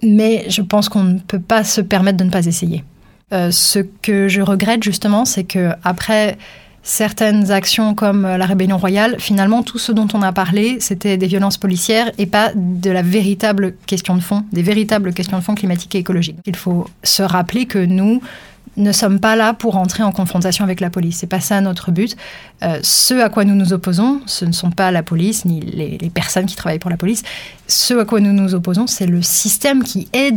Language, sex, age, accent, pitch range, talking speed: French, female, 20-39, French, 185-220 Hz, 215 wpm